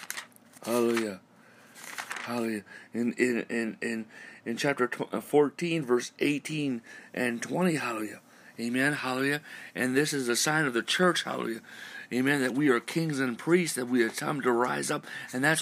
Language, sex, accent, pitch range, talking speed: English, male, American, 135-200 Hz, 160 wpm